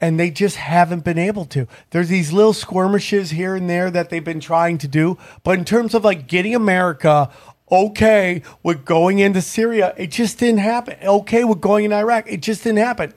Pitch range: 145-180 Hz